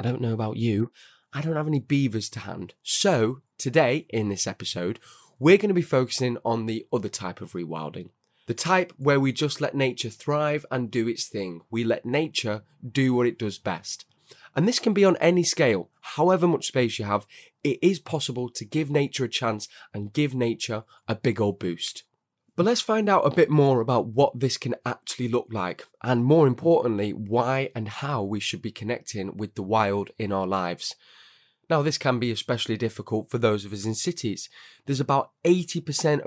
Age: 20-39